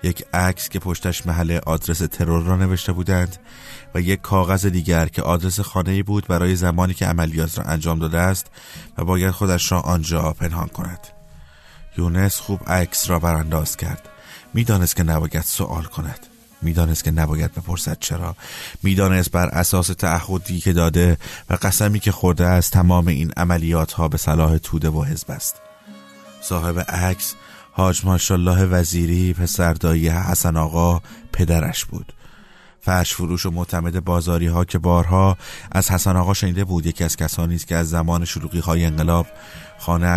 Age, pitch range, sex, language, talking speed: 30-49, 85-95 Hz, male, Persian, 155 wpm